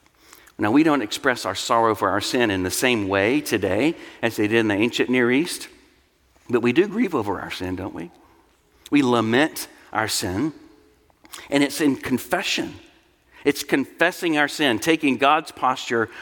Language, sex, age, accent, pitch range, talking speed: English, male, 60-79, American, 115-160 Hz, 170 wpm